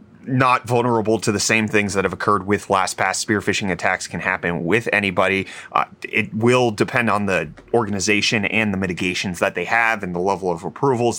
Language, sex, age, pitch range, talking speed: English, male, 30-49, 105-155 Hz, 200 wpm